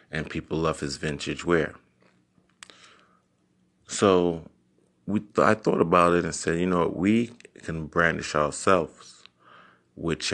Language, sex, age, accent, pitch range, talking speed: English, male, 30-49, American, 70-80 Hz, 135 wpm